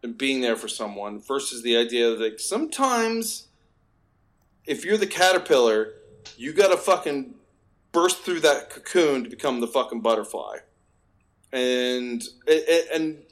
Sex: male